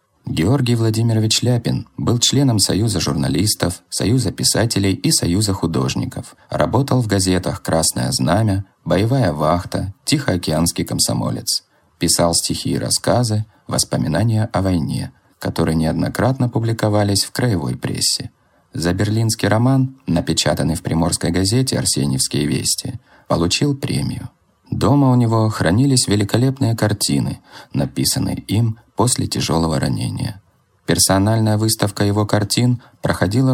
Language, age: Russian, 30-49